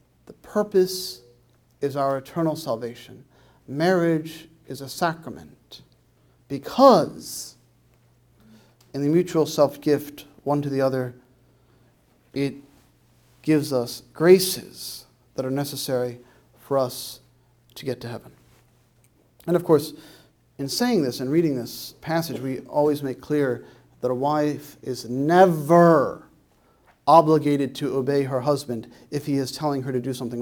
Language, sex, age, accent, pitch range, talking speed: English, male, 40-59, American, 125-155 Hz, 125 wpm